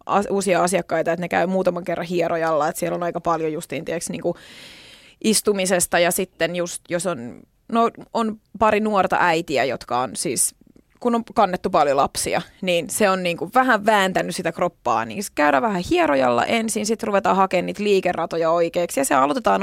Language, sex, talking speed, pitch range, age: Finnish, female, 170 wpm, 170-195 Hz, 20-39